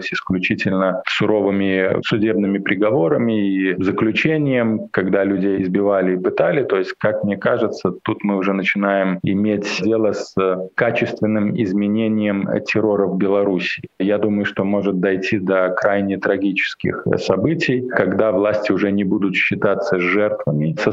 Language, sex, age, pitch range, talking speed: Russian, male, 20-39, 95-105 Hz, 130 wpm